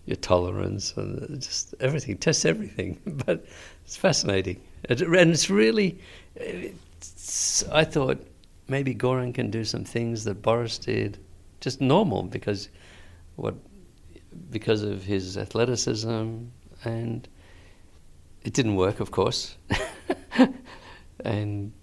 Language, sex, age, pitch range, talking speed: English, male, 50-69, 90-125 Hz, 110 wpm